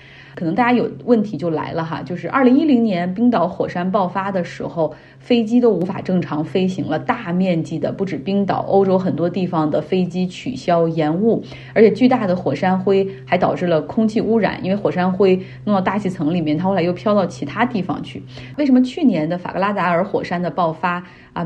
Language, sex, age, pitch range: Chinese, female, 30-49, 160-210 Hz